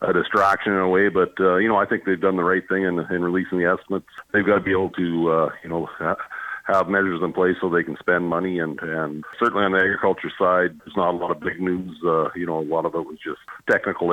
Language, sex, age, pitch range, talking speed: English, male, 50-69, 85-95 Hz, 270 wpm